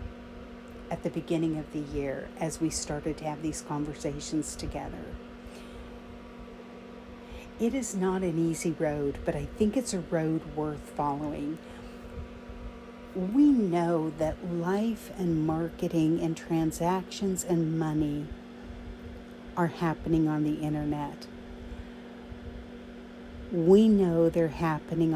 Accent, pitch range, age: American, 160-195 Hz, 50-69